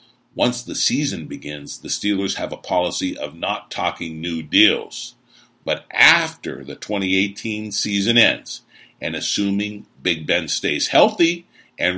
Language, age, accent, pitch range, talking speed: English, 50-69, American, 90-120 Hz, 135 wpm